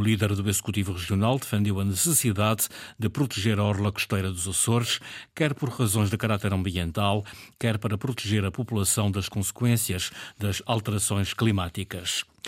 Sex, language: male, Portuguese